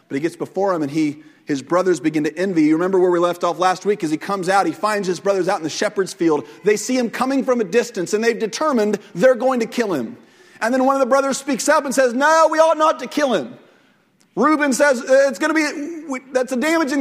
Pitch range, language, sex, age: 195-295 Hz, English, male, 40-59